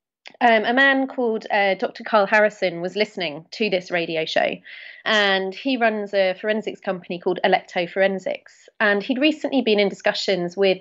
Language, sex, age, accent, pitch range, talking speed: English, female, 30-49, British, 185-235 Hz, 165 wpm